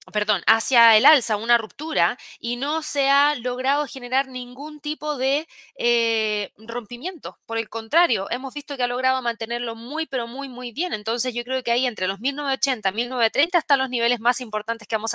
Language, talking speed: Spanish, 185 wpm